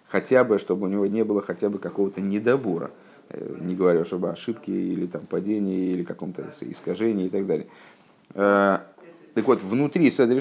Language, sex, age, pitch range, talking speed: Russian, male, 50-69, 95-145 Hz, 160 wpm